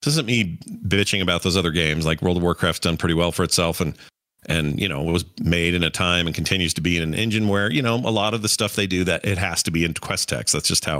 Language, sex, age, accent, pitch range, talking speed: English, male, 40-59, American, 85-115 Hz, 305 wpm